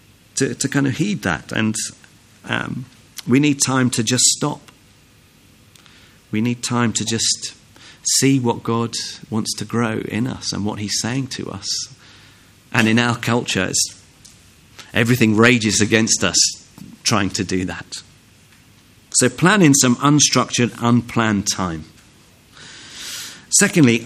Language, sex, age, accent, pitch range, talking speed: English, male, 40-59, British, 105-135 Hz, 130 wpm